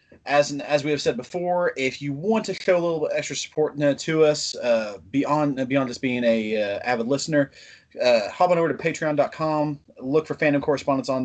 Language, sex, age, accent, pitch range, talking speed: English, male, 30-49, American, 120-155 Hz, 210 wpm